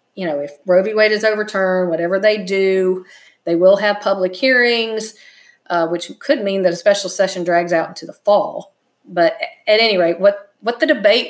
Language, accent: English, American